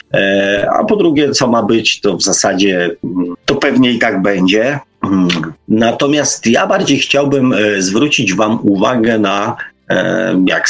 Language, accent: Polish, native